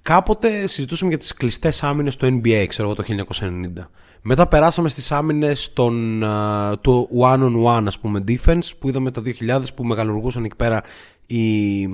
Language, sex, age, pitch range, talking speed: Greek, male, 20-39, 105-145 Hz, 170 wpm